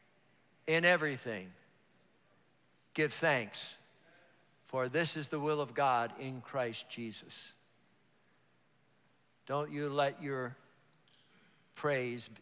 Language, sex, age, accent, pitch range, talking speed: English, male, 50-69, American, 145-190 Hz, 90 wpm